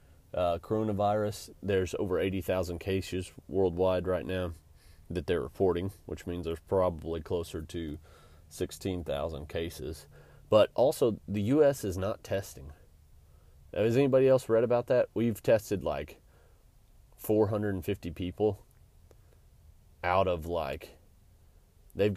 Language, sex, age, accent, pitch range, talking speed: English, male, 30-49, American, 80-100 Hz, 115 wpm